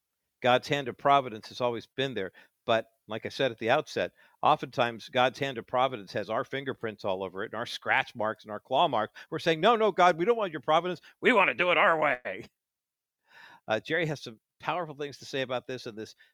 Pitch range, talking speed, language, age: 110-140 Hz, 230 wpm, English, 50-69